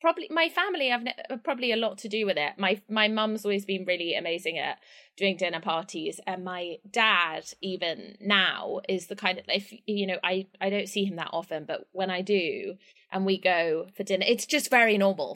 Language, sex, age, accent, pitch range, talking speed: English, female, 20-39, British, 180-215 Hz, 210 wpm